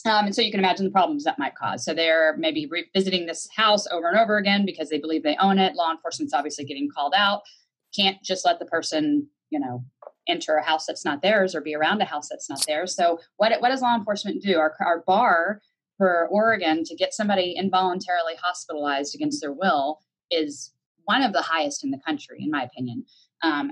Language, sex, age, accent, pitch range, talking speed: English, female, 30-49, American, 160-220 Hz, 220 wpm